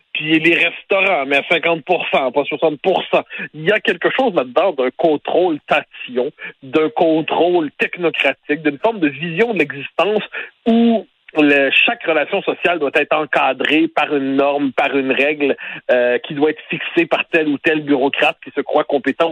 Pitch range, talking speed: 140-200 Hz, 165 wpm